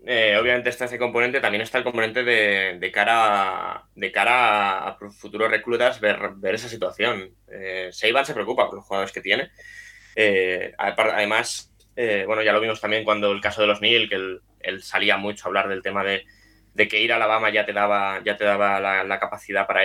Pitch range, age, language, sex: 100-120 Hz, 20-39, Spanish, male